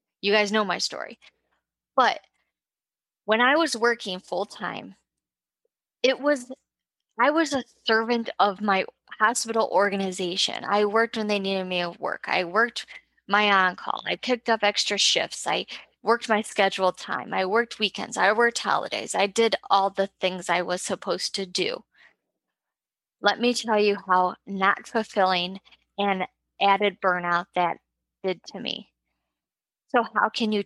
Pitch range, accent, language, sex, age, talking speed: 185-235 Hz, American, English, female, 10-29, 150 wpm